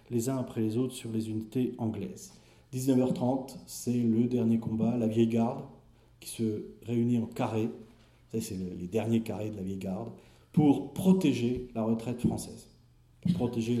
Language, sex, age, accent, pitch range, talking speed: French, male, 40-59, French, 110-125 Hz, 160 wpm